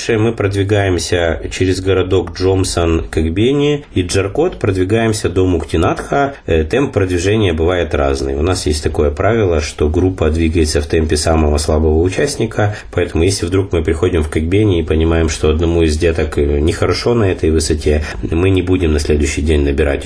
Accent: native